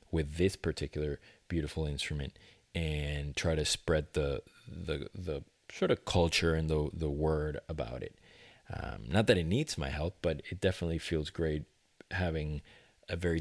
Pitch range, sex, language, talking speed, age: 75-95 Hz, male, English, 160 wpm, 30-49